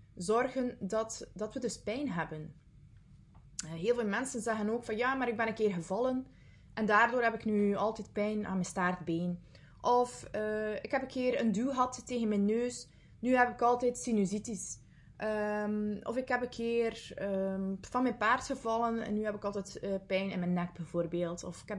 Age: 20-39